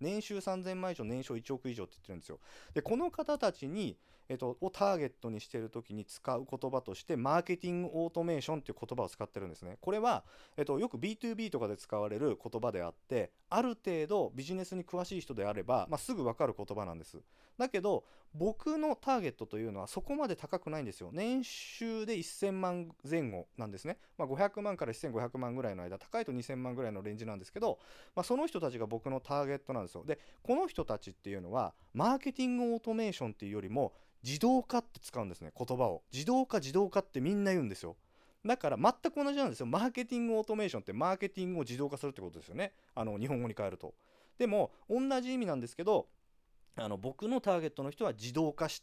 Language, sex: Japanese, male